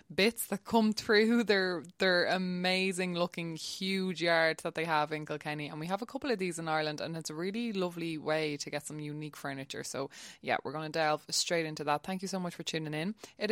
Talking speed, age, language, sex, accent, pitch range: 230 wpm, 20-39, English, female, Irish, 155-190 Hz